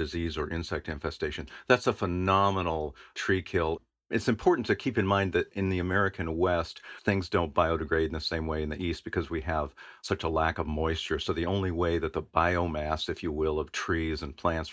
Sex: male